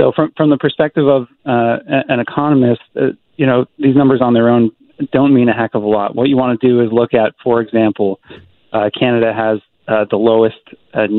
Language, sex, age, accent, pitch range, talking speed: English, male, 40-59, American, 110-125 Hz, 220 wpm